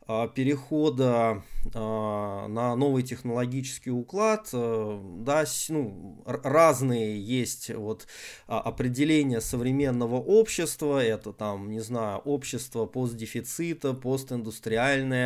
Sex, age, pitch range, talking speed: male, 20-39, 115-145 Hz, 85 wpm